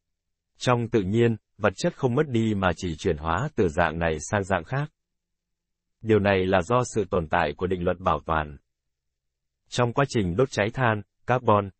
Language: Vietnamese